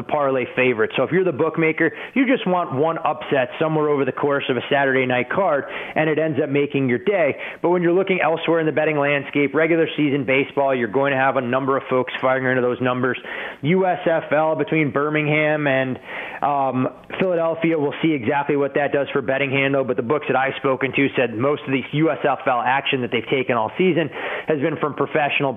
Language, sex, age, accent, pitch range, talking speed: English, male, 20-39, American, 130-155 Hz, 210 wpm